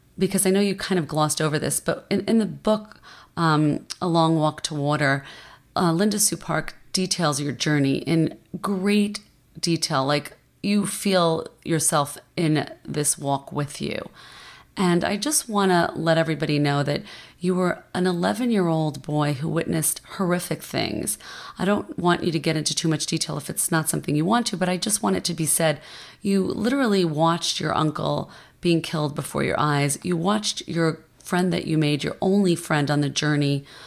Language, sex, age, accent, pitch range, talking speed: English, female, 30-49, American, 155-190 Hz, 185 wpm